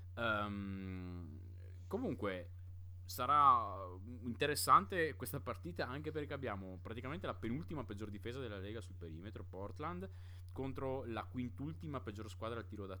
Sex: male